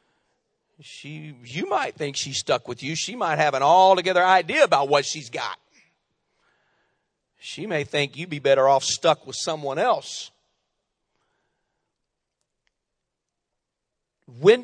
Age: 40-59